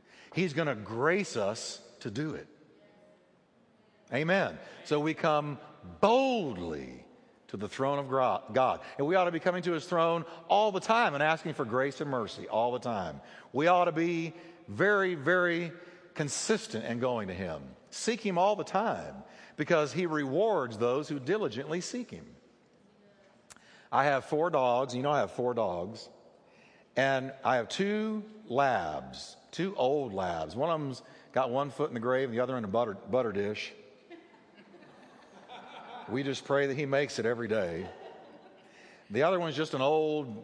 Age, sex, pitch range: 50-69, male, 130-180 Hz